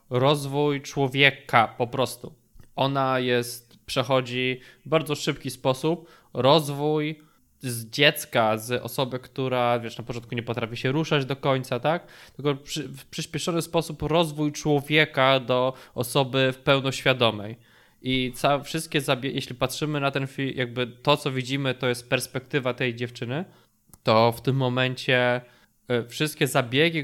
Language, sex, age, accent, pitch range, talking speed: Polish, male, 20-39, native, 120-145 Hz, 130 wpm